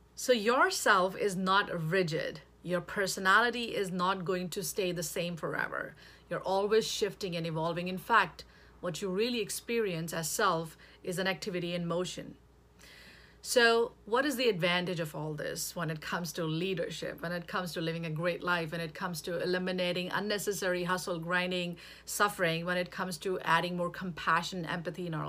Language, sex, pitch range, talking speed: English, female, 175-220 Hz, 175 wpm